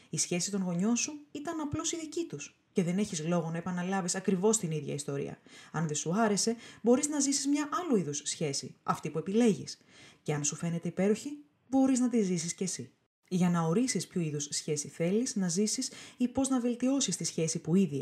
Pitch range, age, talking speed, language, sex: 160-230 Hz, 20-39, 205 wpm, Greek, female